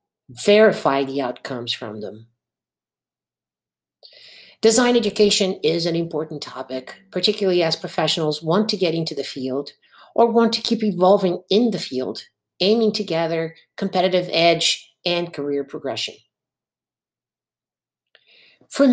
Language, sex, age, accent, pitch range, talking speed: English, female, 50-69, American, 140-195 Hz, 115 wpm